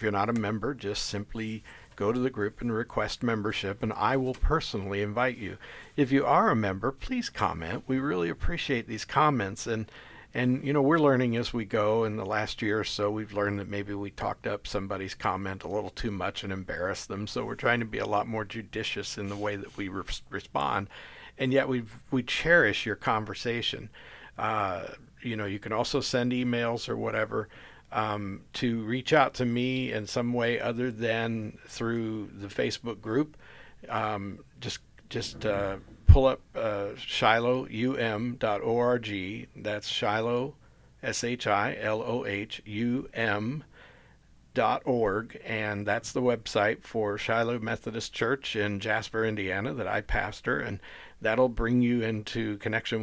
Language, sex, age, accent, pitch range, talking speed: English, male, 60-79, American, 105-120 Hz, 160 wpm